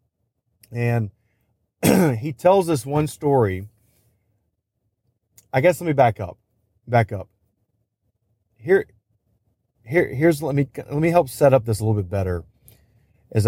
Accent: American